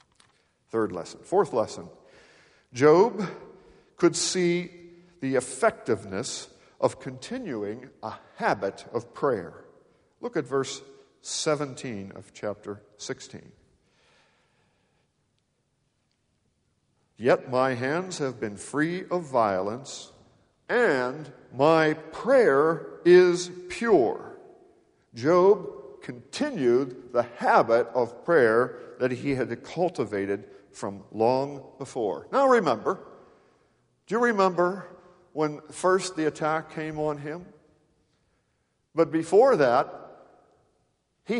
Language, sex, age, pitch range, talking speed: English, male, 50-69, 150-195 Hz, 95 wpm